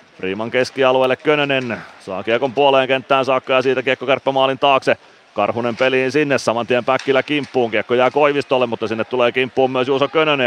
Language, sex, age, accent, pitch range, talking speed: Finnish, male, 30-49, native, 120-140 Hz, 180 wpm